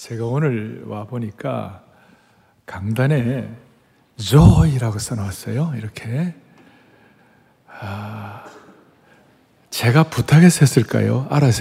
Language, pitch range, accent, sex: Korean, 105-135 Hz, native, male